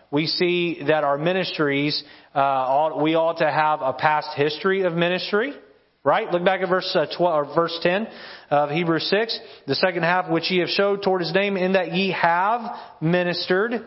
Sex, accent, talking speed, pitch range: male, American, 190 wpm, 145-180 Hz